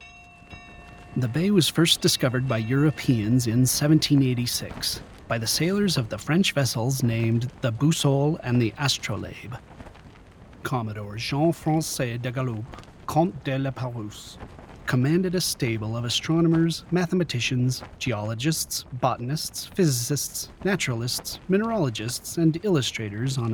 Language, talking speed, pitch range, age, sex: English, 110 wpm, 115-160 Hz, 30-49, male